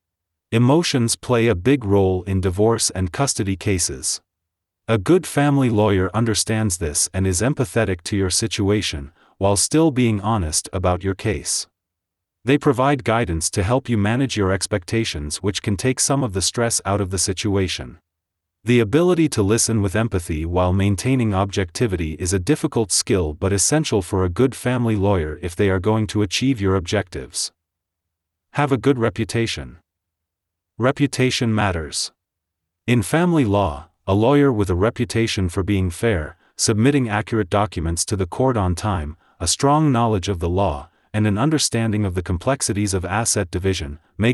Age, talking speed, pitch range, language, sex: 30-49, 160 wpm, 90-115 Hz, English, male